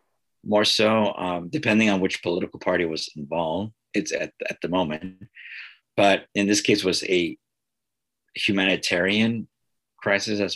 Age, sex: 50-69, male